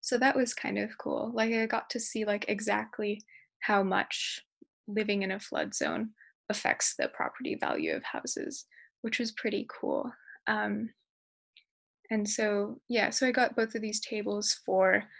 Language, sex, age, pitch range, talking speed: English, female, 20-39, 205-245 Hz, 165 wpm